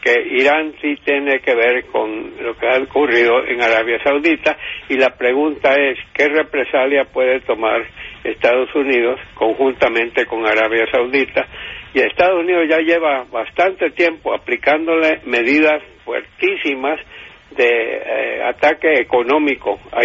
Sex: male